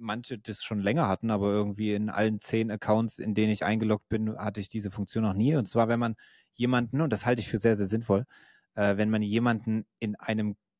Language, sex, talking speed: German, male, 220 wpm